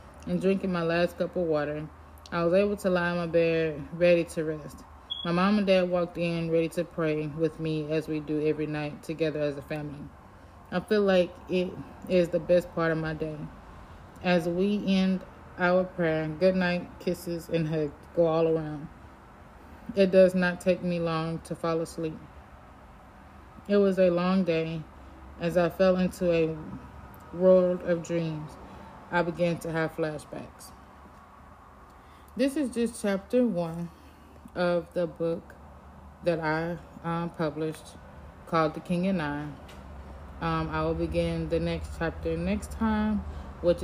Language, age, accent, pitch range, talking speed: English, 20-39, American, 145-175 Hz, 160 wpm